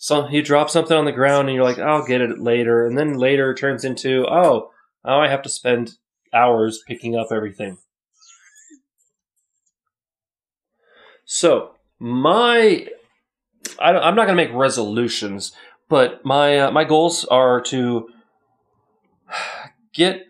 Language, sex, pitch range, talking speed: English, male, 120-175 Hz, 140 wpm